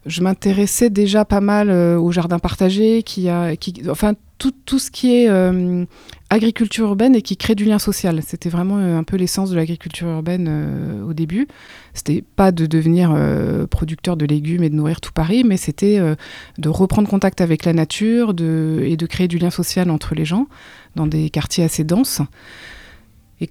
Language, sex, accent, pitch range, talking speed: French, female, French, 155-190 Hz, 195 wpm